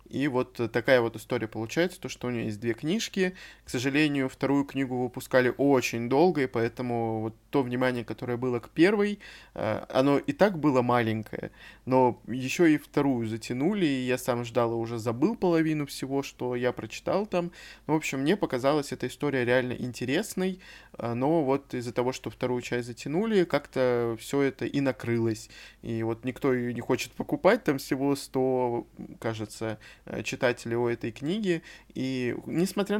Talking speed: 160 wpm